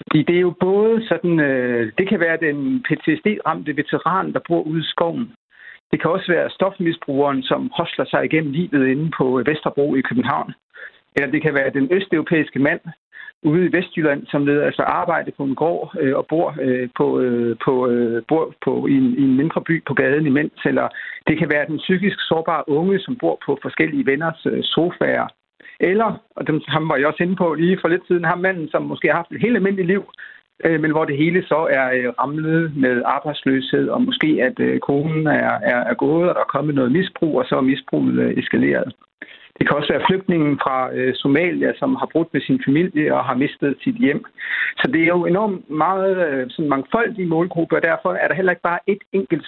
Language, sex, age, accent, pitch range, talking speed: Danish, male, 60-79, native, 140-180 Hz, 200 wpm